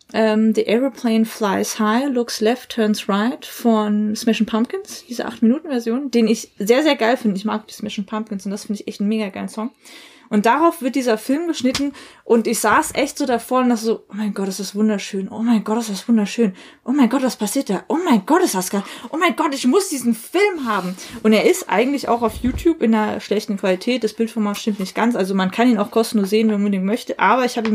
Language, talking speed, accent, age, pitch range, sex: German, 255 wpm, German, 20-39, 215-250 Hz, female